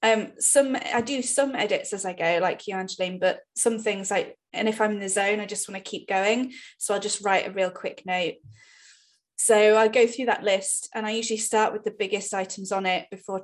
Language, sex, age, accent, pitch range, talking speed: English, female, 10-29, British, 185-230 Hz, 235 wpm